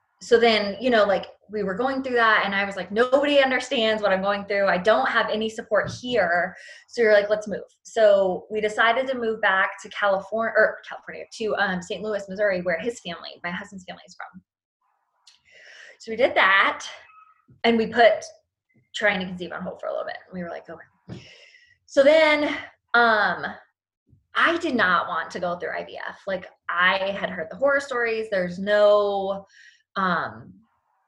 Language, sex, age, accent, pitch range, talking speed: English, female, 20-39, American, 190-235 Hz, 185 wpm